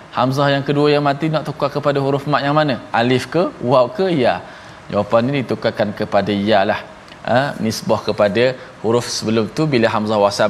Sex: male